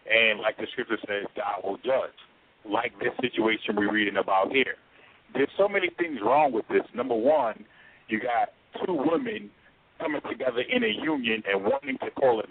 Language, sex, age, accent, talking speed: English, male, 50-69, American, 180 wpm